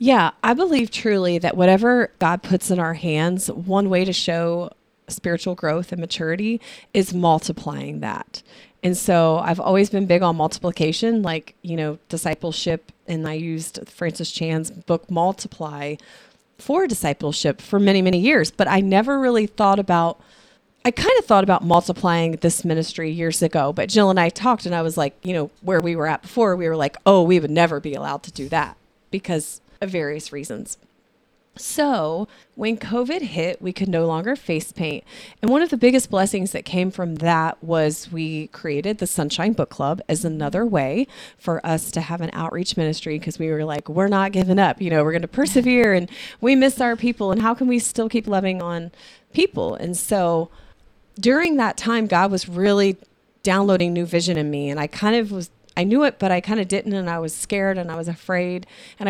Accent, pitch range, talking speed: American, 165-215 Hz, 195 wpm